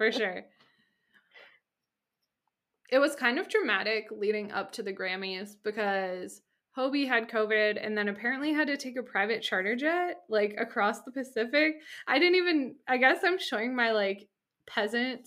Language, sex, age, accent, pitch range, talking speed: English, female, 20-39, American, 205-265 Hz, 155 wpm